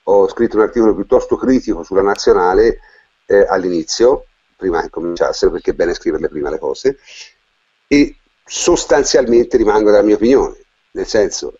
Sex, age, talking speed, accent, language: male, 50-69, 145 wpm, native, Italian